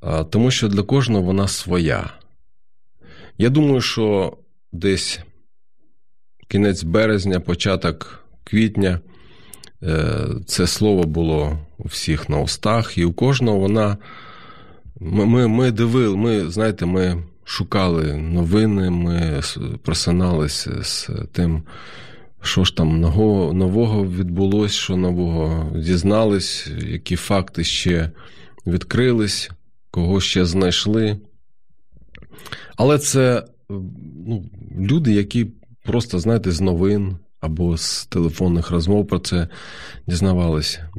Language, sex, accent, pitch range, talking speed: Ukrainian, male, native, 85-110 Hz, 100 wpm